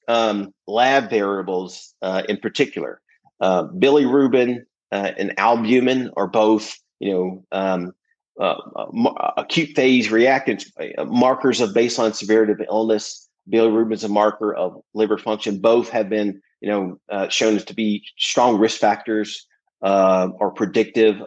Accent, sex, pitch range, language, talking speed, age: American, male, 100-115 Hz, English, 140 wpm, 40-59